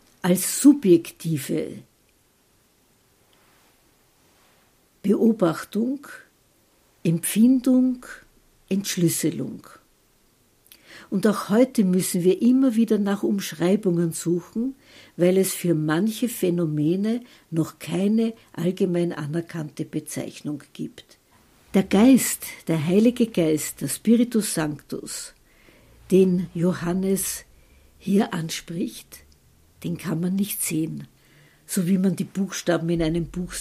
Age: 60-79